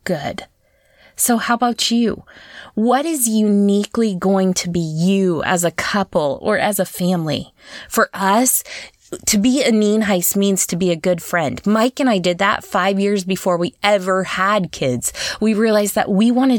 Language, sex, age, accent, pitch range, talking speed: English, female, 20-39, American, 175-215 Hz, 175 wpm